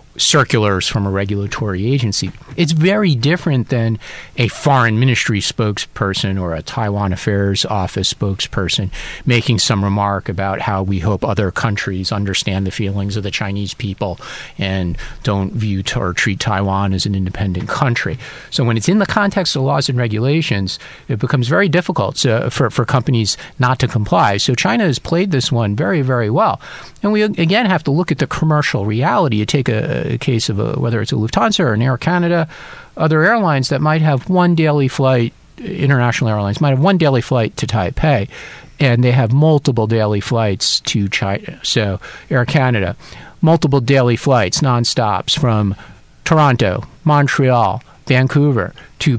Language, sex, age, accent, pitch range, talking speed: English, male, 40-59, American, 105-150 Hz, 165 wpm